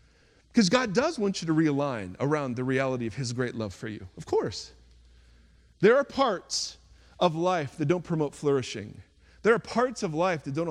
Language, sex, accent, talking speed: English, male, American, 190 wpm